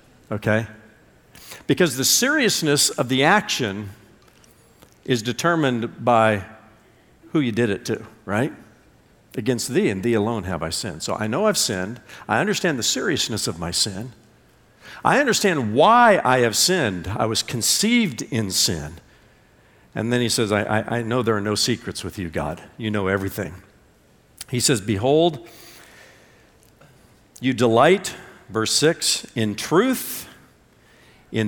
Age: 50-69